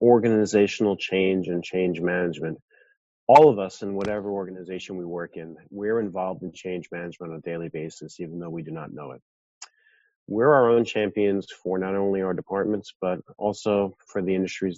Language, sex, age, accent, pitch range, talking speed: English, male, 30-49, American, 90-110 Hz, 180 wpm